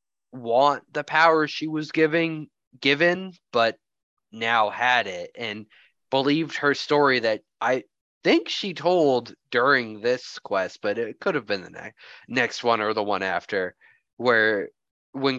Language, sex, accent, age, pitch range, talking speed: English, male, American, 20-39, 110-145 Hz, 150 wpm